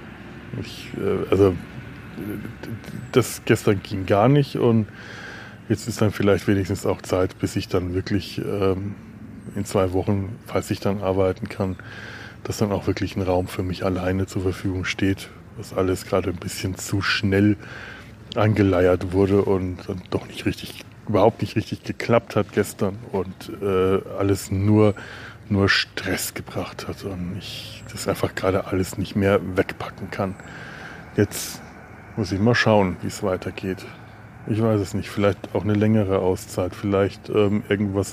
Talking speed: 150 wpm